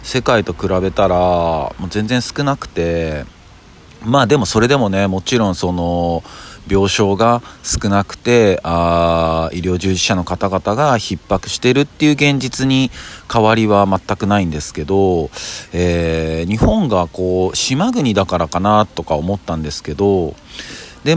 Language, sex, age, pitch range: Japanese, male, 40-59, 90-110 Hz